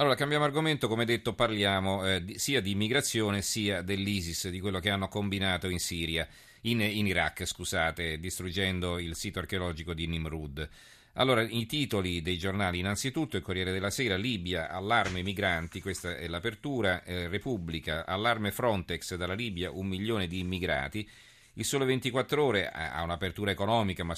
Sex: male